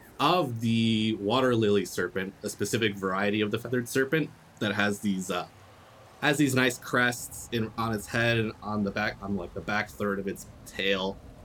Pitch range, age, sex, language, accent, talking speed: 100-120 Hz, 20-39, male, English, American, 190 wpm